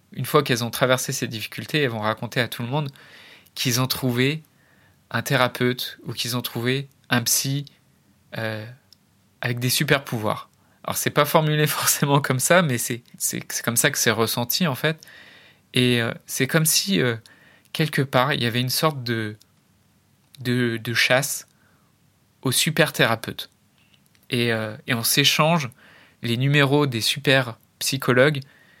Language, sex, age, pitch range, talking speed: French, male, 20-39, 120-145 Hz, 155 wpm